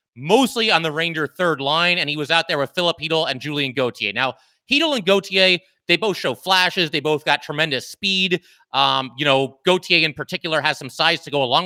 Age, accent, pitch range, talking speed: 30-49, American, 140-180 Hz, 215 wpm